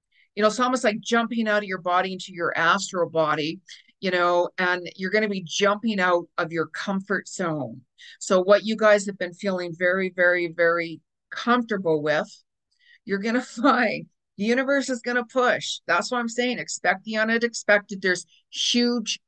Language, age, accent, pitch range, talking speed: English, 50-69, American, 170-215 Hz, 180 wpm